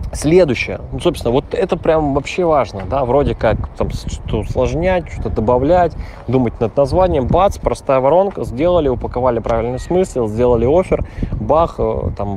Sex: male